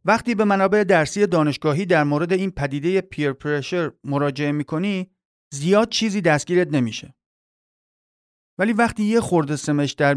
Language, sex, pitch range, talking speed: Persian, male, 145-195 Hz, 130 wpm